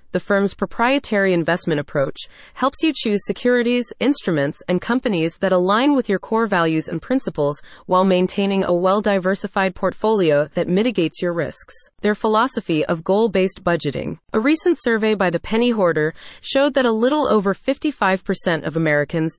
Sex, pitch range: female, 170-220 Hz